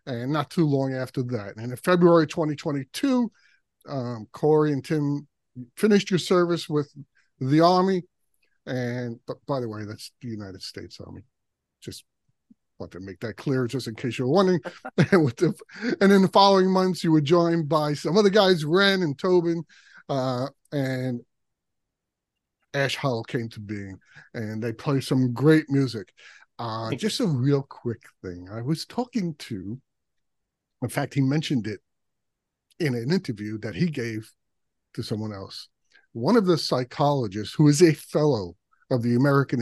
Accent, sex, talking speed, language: American, male, 155 wpm, English